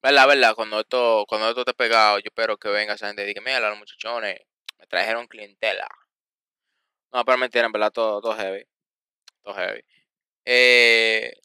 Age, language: 20-39, Spanish